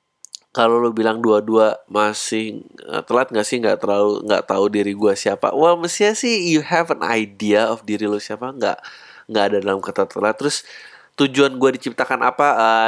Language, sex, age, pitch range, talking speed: Indonesian, male, 20-39, 105-140 Hz, 175 wpm